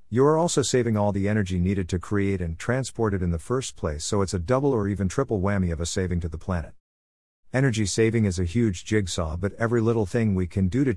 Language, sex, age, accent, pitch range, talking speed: English, male, 50-69, American, 85-115 Hz, 245 wpm